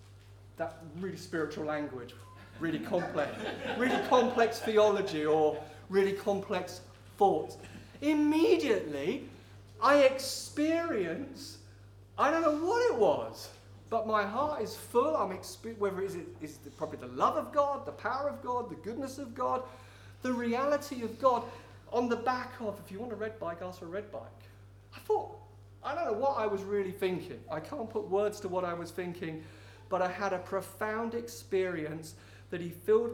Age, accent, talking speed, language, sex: 40-59, British, 165 wpm, English, male